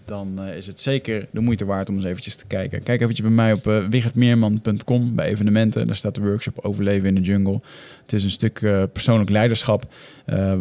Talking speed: 210 wpm